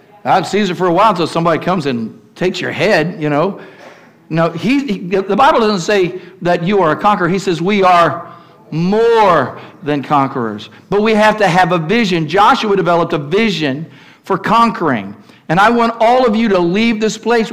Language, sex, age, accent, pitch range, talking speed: English, male, 50-69, American, 145-190 Hz, 200 wpm